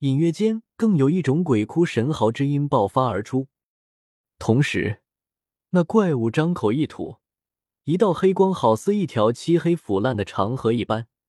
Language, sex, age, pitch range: Chinese, male, 20-39, 110-165 Hz